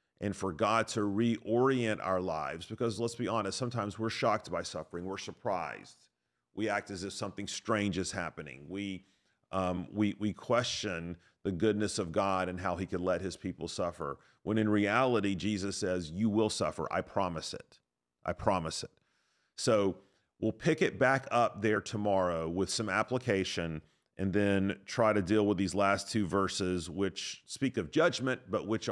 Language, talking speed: English, 175 wpm